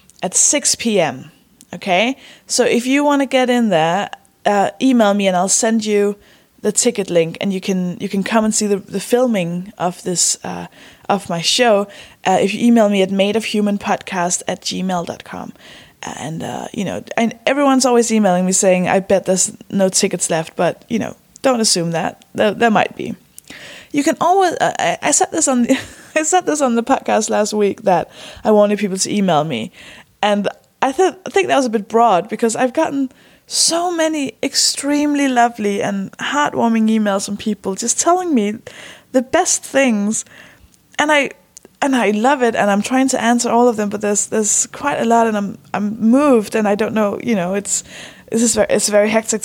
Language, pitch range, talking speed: English, 195-250 Hz, 195 wpm